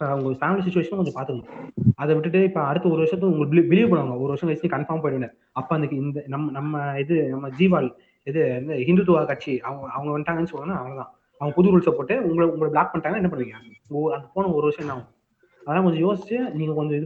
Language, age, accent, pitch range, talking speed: Tamil, 20-39, native, 140-185 Hz, 120 wpm